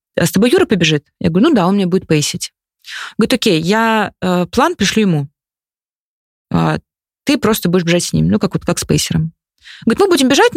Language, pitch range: Russian, 160-215 Hz